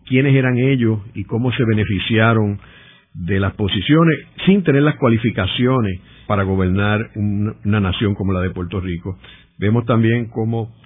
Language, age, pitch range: Spanish, 60-79, 95-115 Hz